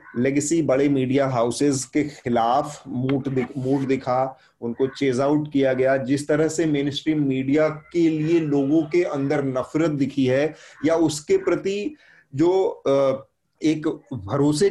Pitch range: 130-155 Hz